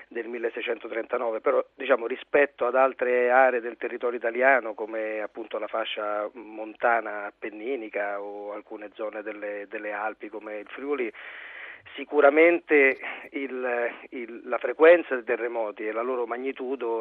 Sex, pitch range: male, 115-165 Hz